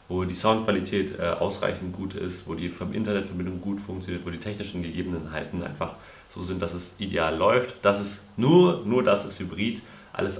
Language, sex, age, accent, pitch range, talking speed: German, male, 30-49, German, 85-100 Hz, 180 wpm